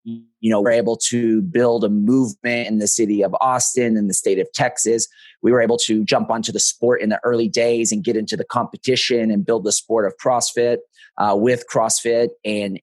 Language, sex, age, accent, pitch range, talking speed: English, male, 30-49, American, 115-130 Hz, 215 wpm